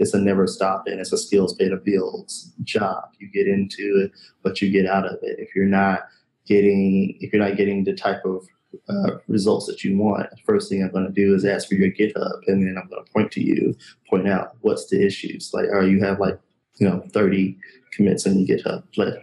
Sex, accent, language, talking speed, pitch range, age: male, American, English, 240 wpm, 95-100 Hz, 20-39